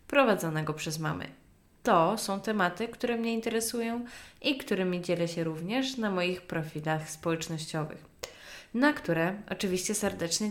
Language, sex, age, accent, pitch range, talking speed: Polish, female, 20-39, native, 165-225 Hz, 125 wpm